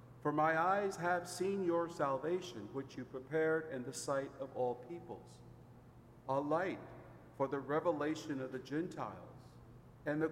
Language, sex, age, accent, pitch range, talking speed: English, male, 50-69, American, 120-155 Hz, 150 wpm